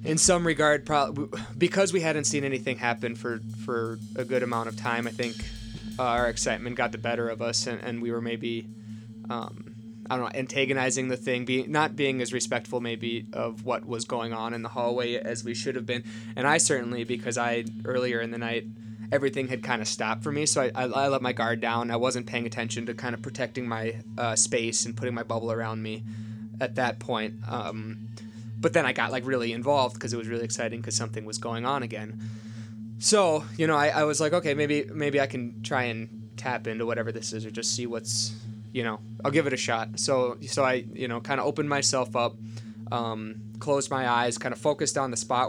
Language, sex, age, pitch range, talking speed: English, male, 20-39, 110-125 Hz, 225 wpm